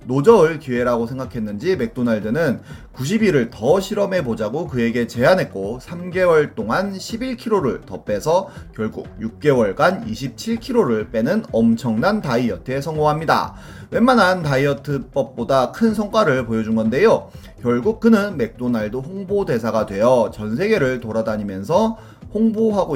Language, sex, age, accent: Korean, male, 30-49, native